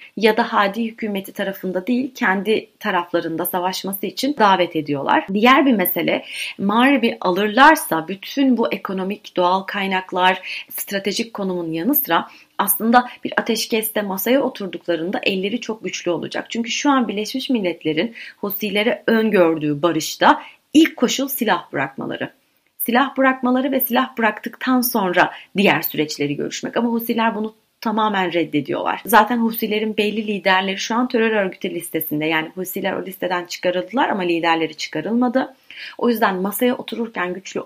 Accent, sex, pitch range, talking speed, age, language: native, female, 175-235 Hz, 130 wpm, 30-49, Turkish